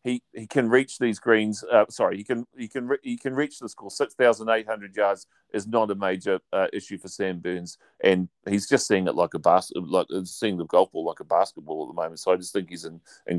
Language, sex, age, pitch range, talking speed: English, male, 40-59, 100-135 Hz, 245 wpm